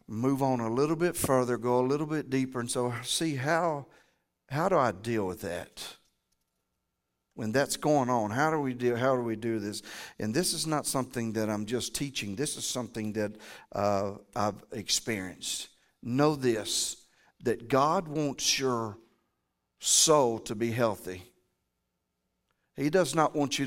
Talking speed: 165 wpm